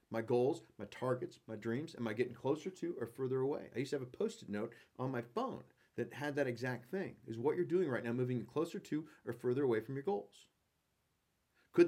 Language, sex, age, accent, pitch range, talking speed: English, male, 40-59, American, 120-185 Hz, 230 wpm